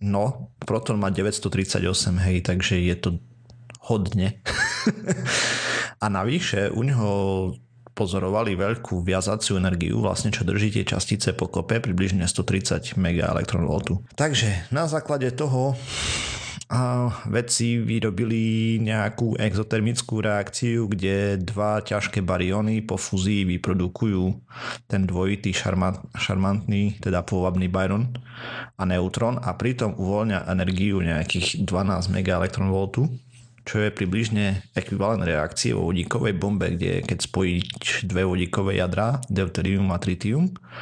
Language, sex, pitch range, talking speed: Slovak, male, 95-115 Hz, 115 wpm